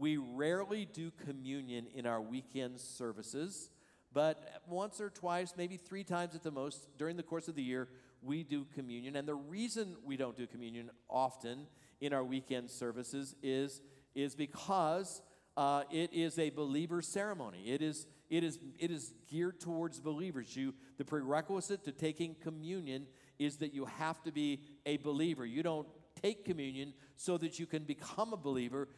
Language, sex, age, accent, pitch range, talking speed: English, male, 50-69, American, 135-170 Hz, 170 wpm